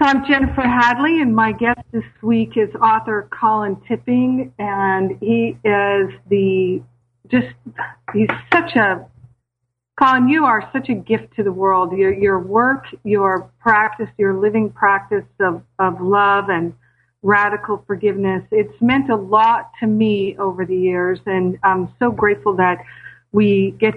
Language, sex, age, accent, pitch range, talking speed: English, female, 50-69, American, 195-235 Hz, 150 wpm